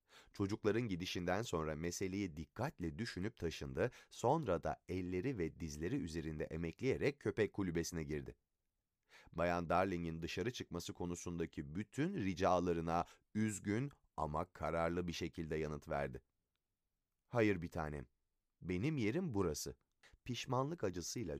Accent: native